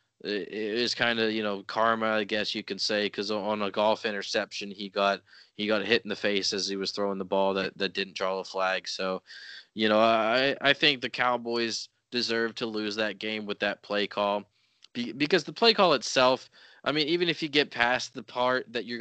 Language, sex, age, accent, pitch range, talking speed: English, male, 20-39, American, 105-135 Hz, 220 wpm